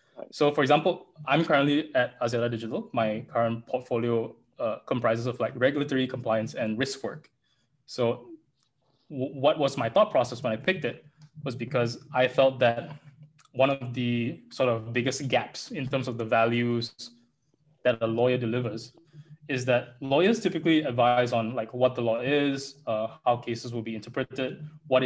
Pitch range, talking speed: 120-150 Hz, 170 wpm